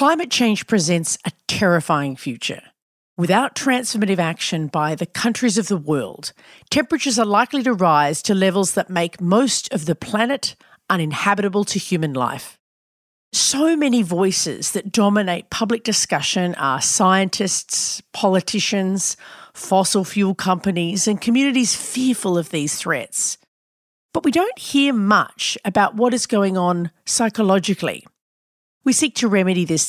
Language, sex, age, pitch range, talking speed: English, female, 40-59, 175-230 Hz, 135 wpm